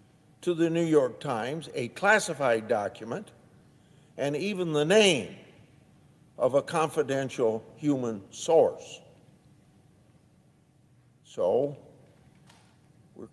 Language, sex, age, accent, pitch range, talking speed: English, male, 60-79, American, 125-160 Hz, 85 wpm